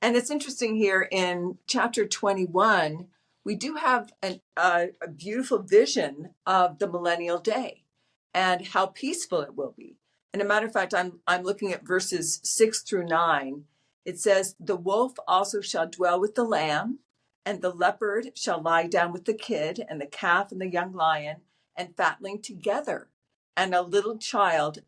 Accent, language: American, English